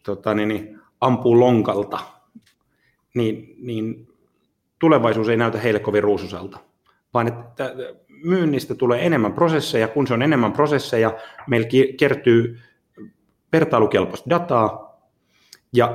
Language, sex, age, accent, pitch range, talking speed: Finnish, male, 30-49, native, 110-140 Hz, 105 wpm